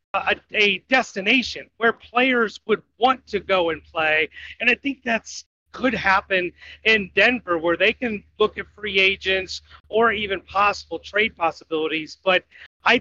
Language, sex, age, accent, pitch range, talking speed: English, male, 30-49, American, 180-215 Hz, 150 wpm